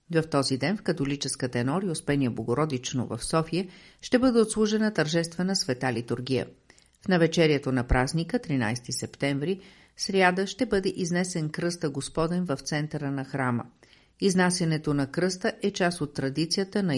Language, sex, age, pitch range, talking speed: Bulgarian, female, 50-69, 135-180 Hz, 140 wpm